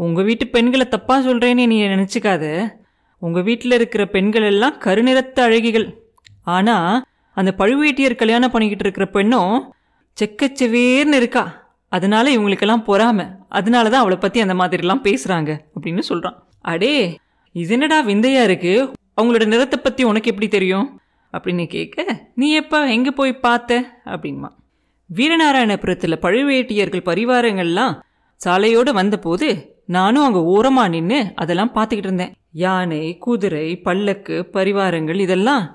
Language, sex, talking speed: Tamil, female, 120 wpm